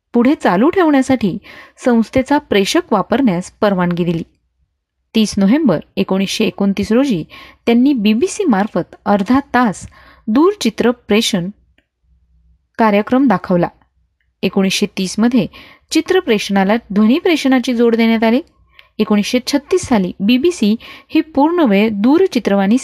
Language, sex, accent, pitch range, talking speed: Marathi, female, native, 195-265 Hz, 90 wpm